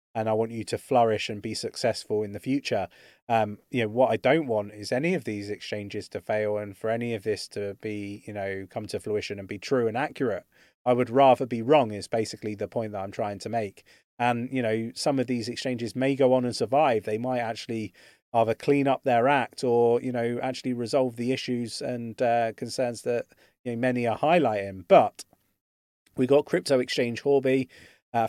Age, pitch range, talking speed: 30-49, 110-130 Hz, 210 wpm